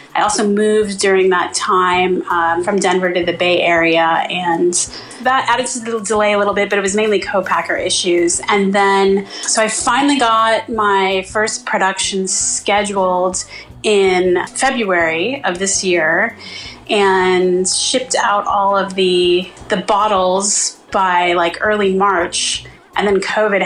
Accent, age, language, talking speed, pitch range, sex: American, 30-49, English, 145 wpm, 180-215 Hz, female